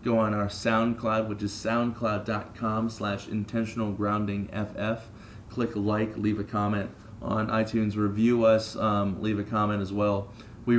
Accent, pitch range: American, 105-120 Hz